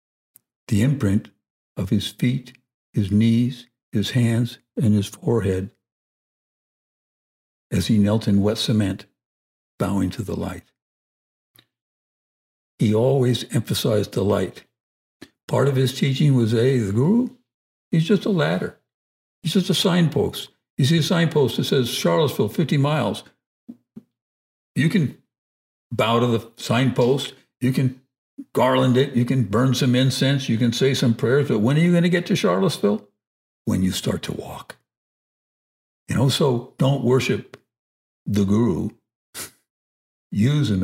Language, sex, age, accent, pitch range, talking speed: English, male, 60-79, American, 100-135 Hz, 140 wpm